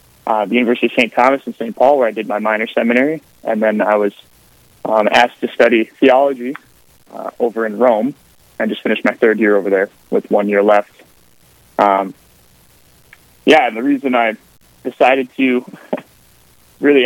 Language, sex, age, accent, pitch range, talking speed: English, male, 20-39, American, 105-130 Hz, 170 wpm